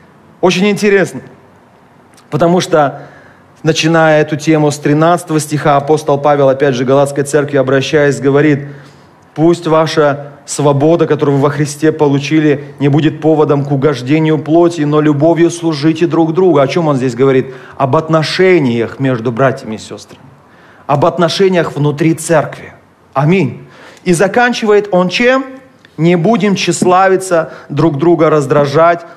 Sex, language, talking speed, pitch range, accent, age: male, Russian, 130 wpm, 145-180 Hz, native, 30-49